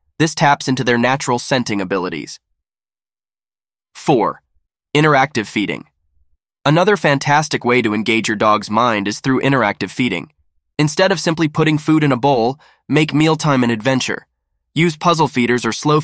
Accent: American